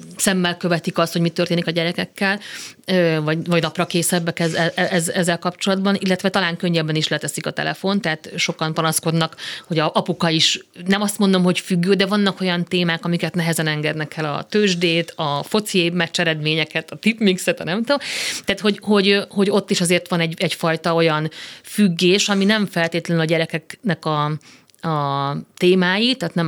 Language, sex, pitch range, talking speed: Hungarian, female, 165-200 Hz, 170 wpm